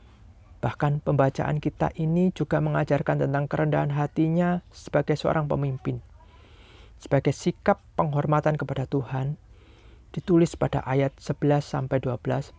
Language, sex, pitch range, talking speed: Indonesian, male, 110-150 Hz, 100 wpm